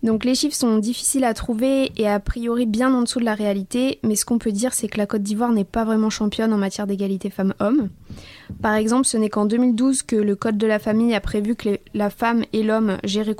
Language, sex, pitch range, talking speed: French, female, 205-235 Hz, 240 wpm